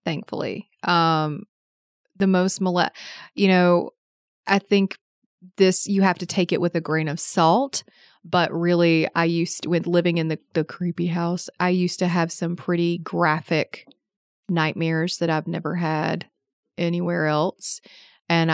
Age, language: 30-49, English